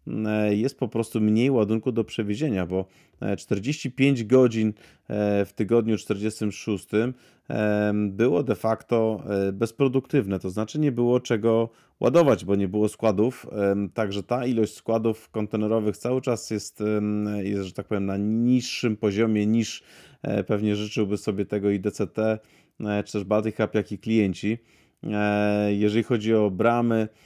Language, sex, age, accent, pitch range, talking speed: Polish, male, 30-49, native, 95-110 Hz, 130 wpm